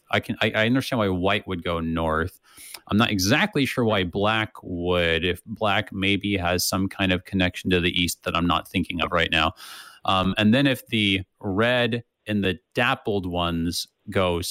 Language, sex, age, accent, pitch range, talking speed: English, male, 30-49, American, 90-110 Hz, 190 wpm